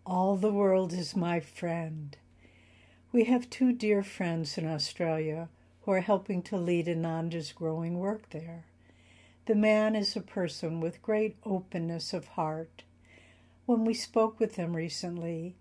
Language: English